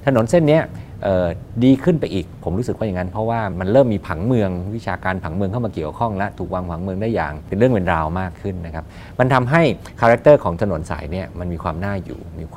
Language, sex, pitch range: Thai, male, 85-105 Hz